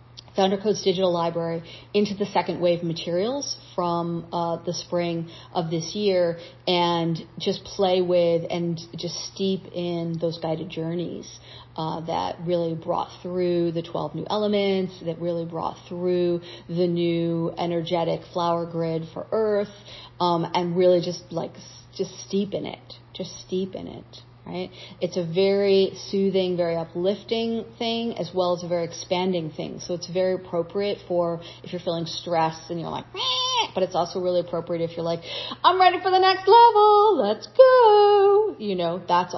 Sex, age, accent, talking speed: female, 40-59, American, 160 wpm